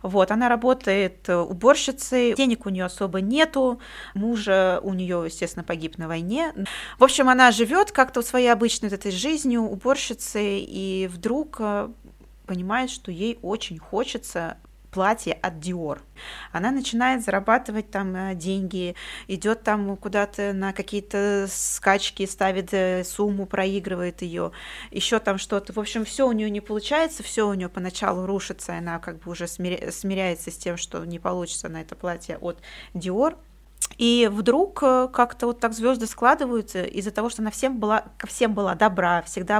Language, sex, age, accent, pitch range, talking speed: Russian, female, 20-39, native, 185-230 Hz, 155 wpm